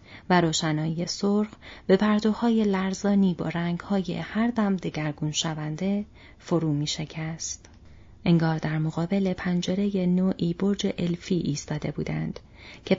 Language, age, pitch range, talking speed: Persian, 30-49, 155-200 Hz, 110 wpm